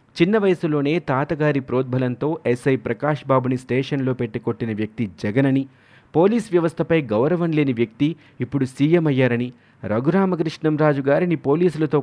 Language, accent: Telugu, native